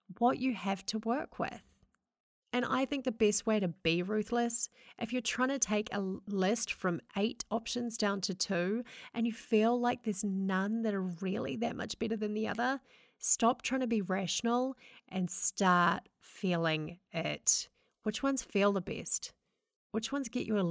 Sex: female